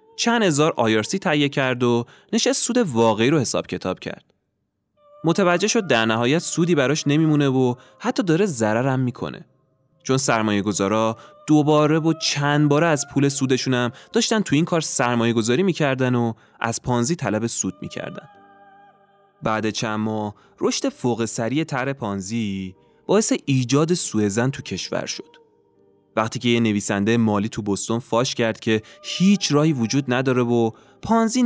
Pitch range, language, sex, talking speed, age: 110-165 Hz, Persian, male, 145 wpm, 20-39